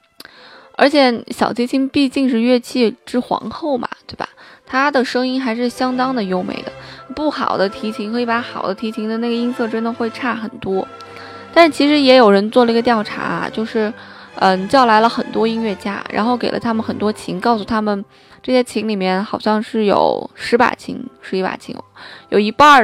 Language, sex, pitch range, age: Chinese, female, 210-255 Hz, 20-39